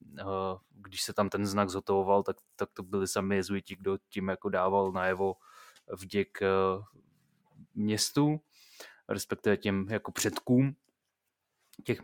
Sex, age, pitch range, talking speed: male, 20-39, 105-120 Hz, 120 wpm